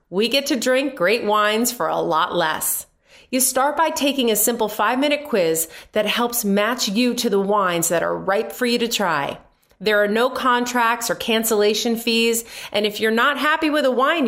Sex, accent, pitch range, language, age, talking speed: female, American, 195-245 Hz, English, 30-49, 200 wpm